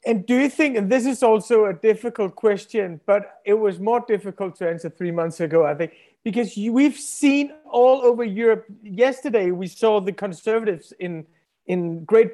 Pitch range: 180-230 Hz